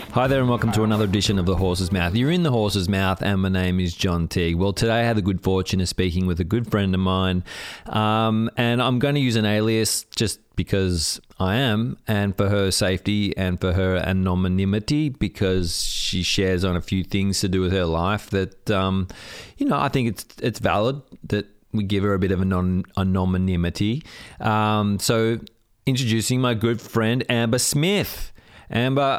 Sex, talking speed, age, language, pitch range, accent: male, 200 wpm, 30-49, English, 95-115 Hz, Australian